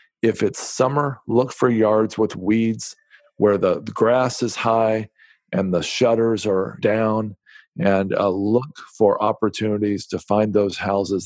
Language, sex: English, male